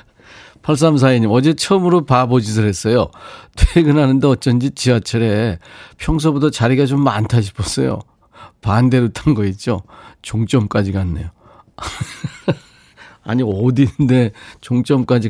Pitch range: 95-140 Hz